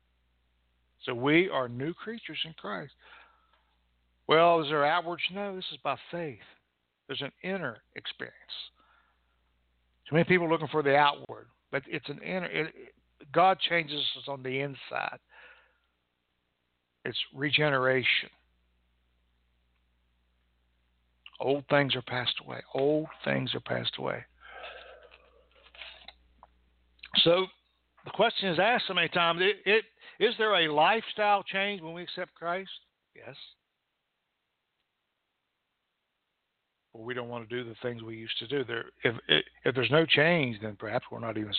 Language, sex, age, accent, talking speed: English, male, 60-79, American, 135 wpm